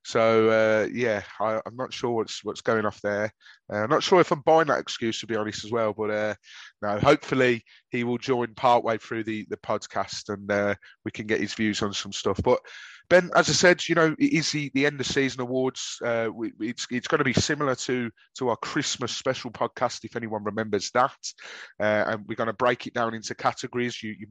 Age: 30-49